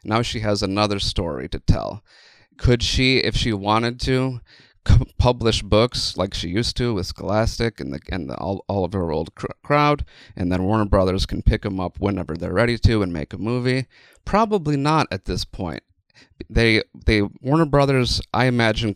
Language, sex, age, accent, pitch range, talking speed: English, male, 30-49, American, 95-115 Hz, 185 wpm